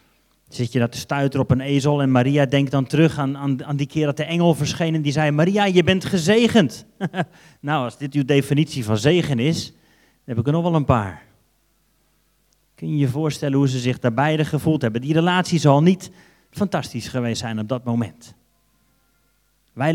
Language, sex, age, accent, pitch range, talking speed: Dutch, male, 30-49, Dutch, 130-160 Hz, 195 wpm